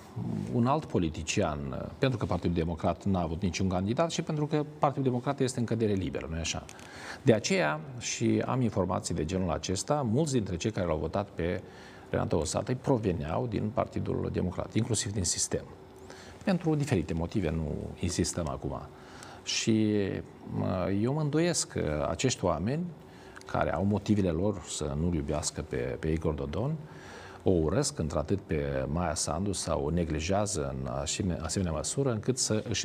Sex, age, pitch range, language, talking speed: male, 40-59, 80-110 Hz, Romanian, 155 wpm